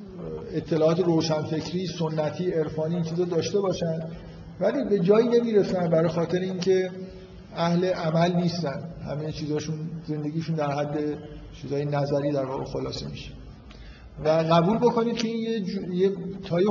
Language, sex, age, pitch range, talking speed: Persian, male, 50-69, 150-180 Hz, 125 wpm